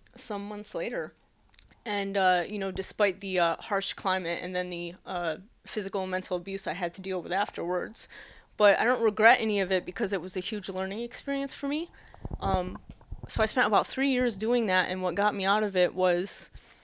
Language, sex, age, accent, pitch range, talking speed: English, female, 20-39, American, 185-220 Hz, 210 wpm